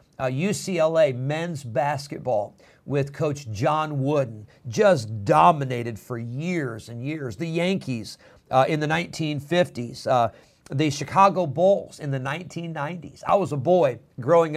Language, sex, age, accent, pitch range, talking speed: English, male, 50-69, American, 135-165 Hz, 130 wpm